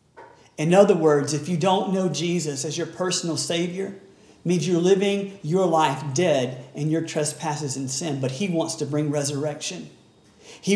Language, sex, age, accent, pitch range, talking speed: English, male, 40-59, American, 150-190 Hz, 175 wpm